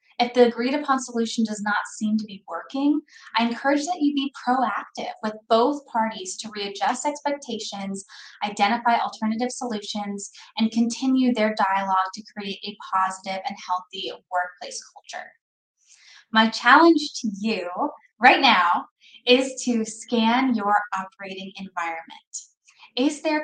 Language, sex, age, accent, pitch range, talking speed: English, female, 10-29, American, 205-250 Hz, 130 wpm